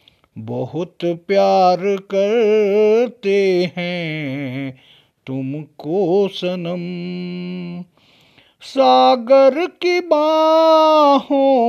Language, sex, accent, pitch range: Hindi, male, native, 210-270 Hz